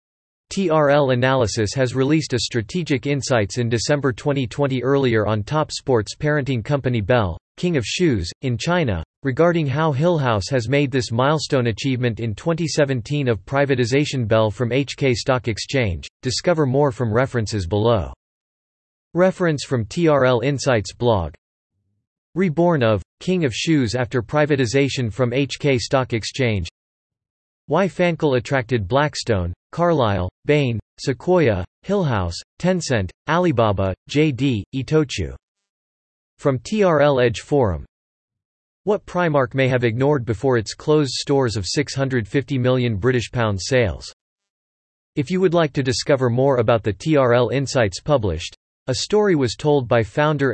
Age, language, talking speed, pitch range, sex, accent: 40-59, English, 130 wpm, 110-145 Hz, male, American